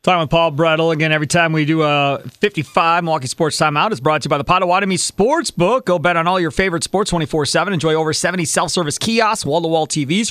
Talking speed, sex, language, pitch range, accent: 215 wpm, male, English, 150-185 Hz, American